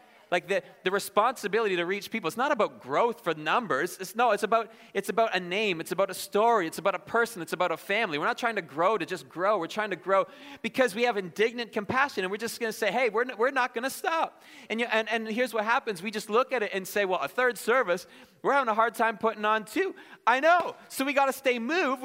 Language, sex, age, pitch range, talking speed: English, male, 30-49, 165-230 Hz, 265 wpm